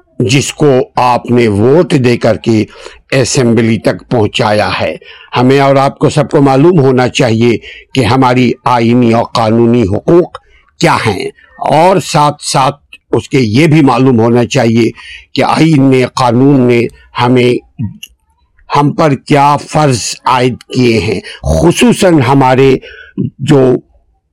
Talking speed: 135 wpm